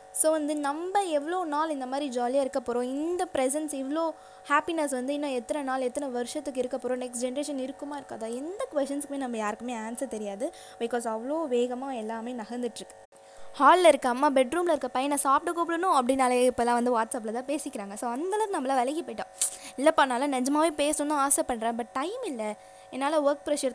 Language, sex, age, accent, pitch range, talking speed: Tamil, female, 20-39, native, 245-300 Hz, 170 wpm